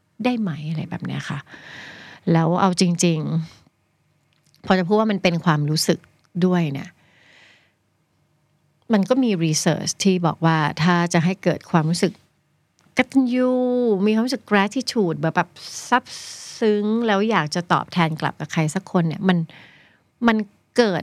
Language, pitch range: Thai, 160-205 Hz